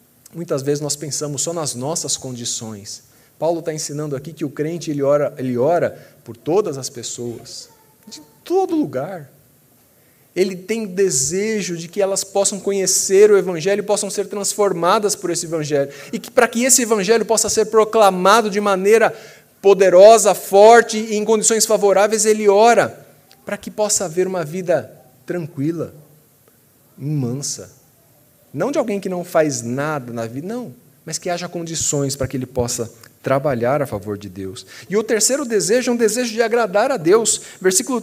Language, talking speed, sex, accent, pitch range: Portuguese, 165 wpm, male, Brazilian, 140-215 Hz